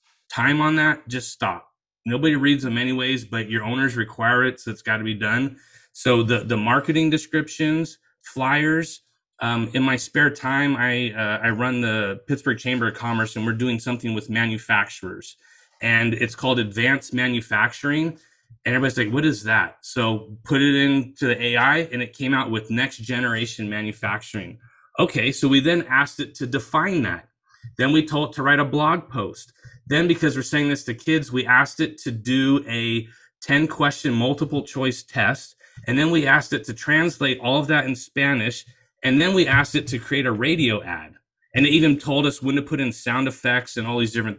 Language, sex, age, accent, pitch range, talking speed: English, male, 30-49, American, 115-140 Hz, 195 wpm